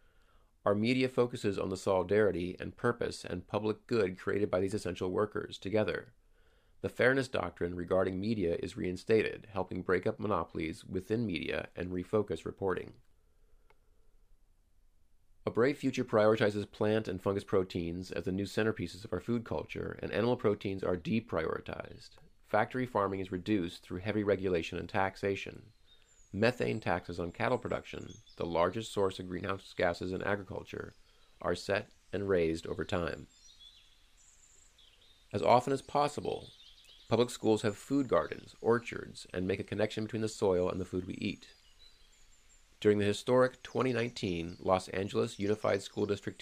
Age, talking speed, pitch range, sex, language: 40-59, 145 wpm, 90-110 Hz, male, English